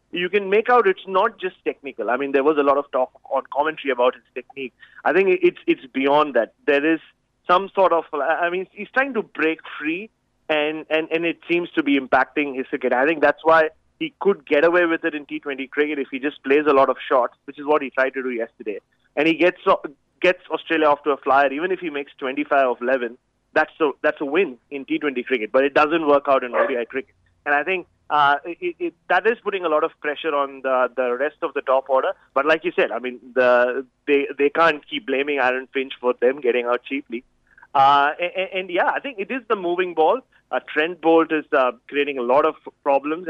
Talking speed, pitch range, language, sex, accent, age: 235 wpm, 135-180 Hz, English, male, Indian, 30-49